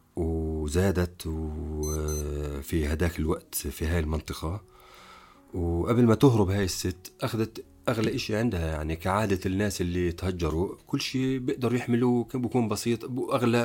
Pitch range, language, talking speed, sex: 85-110 Hz, Arabic, 125 wpm, male